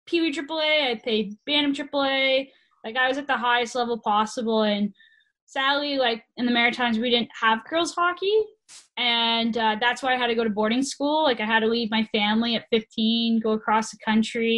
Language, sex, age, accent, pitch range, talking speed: English, female, 10-29, American, 220-260 Hz, 200 wpm